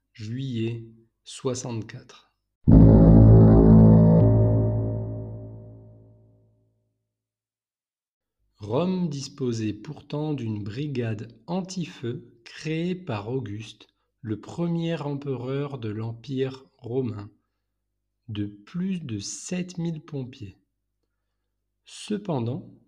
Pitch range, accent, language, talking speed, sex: 110-150 Hz, French, French, 60 wpm, male